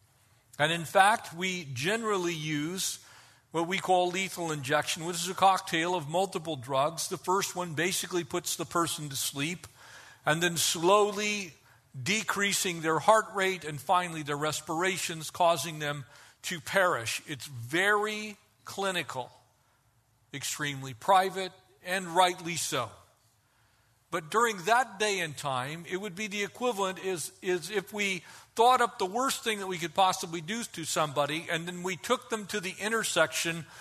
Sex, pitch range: male, 145-195 Hz